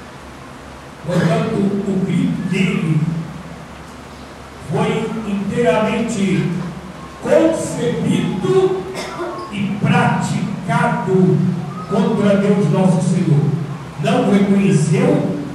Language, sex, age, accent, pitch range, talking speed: Portuguese, male, 60-79, Brazilian, 165-195 Hz, 60 wpm